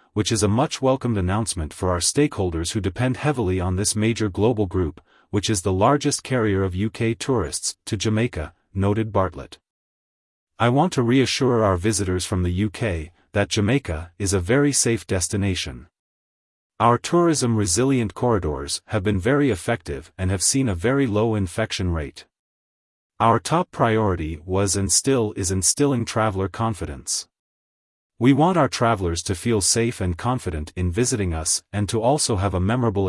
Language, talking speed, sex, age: English, 160 wpm, male, 40-59